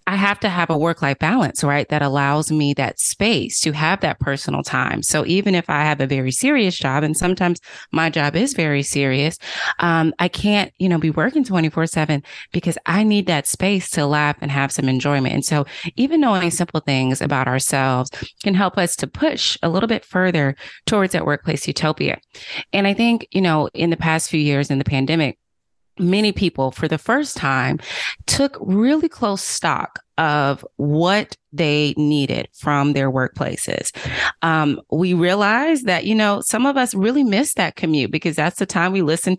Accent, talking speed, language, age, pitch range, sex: American, 185 wpm, English, 30-49, 150-205 Hz, female